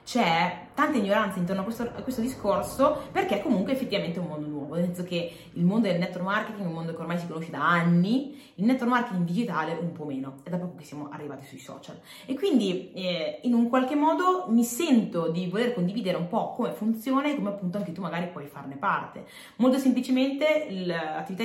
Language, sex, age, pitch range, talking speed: Italian, female, 20-39, 160-225 Hz, 210 wpm